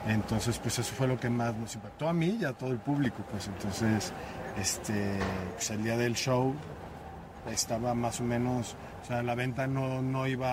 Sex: male